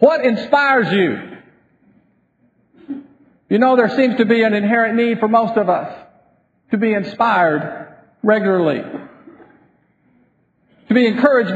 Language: English